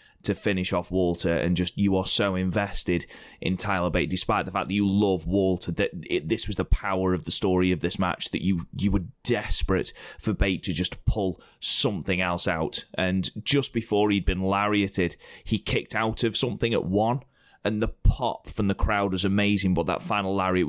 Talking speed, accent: 205 wpm, British